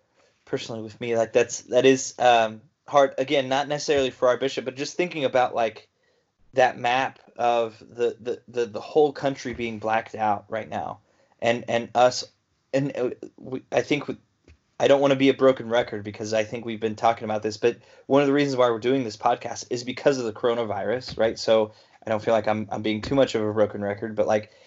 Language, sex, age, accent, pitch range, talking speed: English, male, 20-39, American, 110-130 Hz, 220 wpm